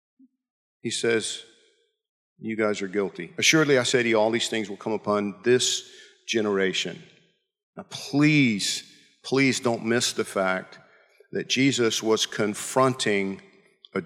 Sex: male